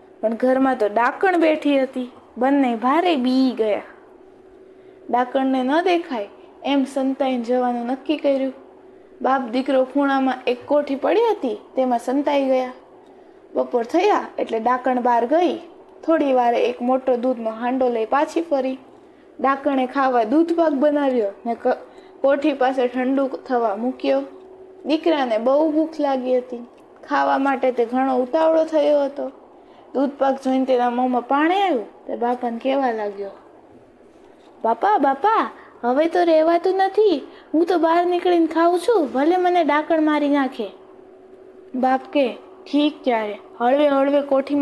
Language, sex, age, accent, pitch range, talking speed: English, female, 20-39, Indian, 255-340 Hz, 90 wpm